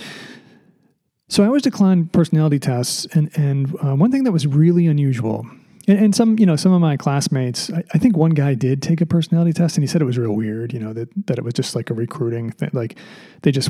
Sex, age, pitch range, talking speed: male, 40-59, 135-180 Hz, 240 wpm